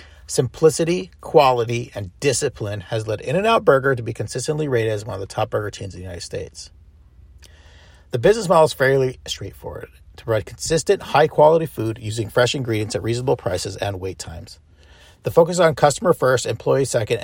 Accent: American